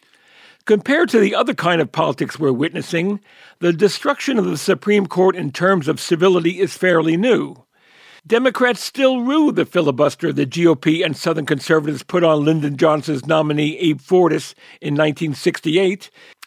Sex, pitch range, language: male, 170-225 Hz, English